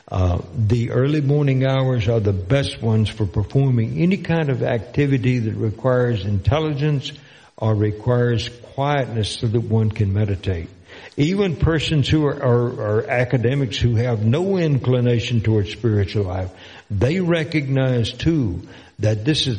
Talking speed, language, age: 140 wpm, English, 60-79